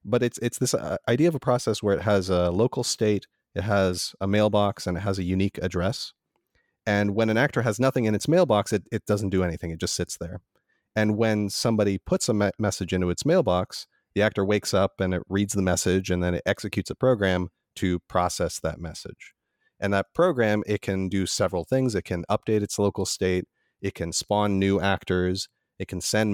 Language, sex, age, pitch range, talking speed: English, male, 40-59, 90-110 Hz, 210 wpm